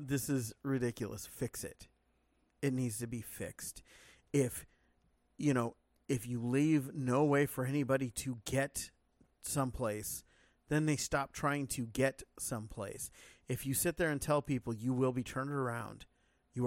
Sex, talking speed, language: male, 155 wpm, English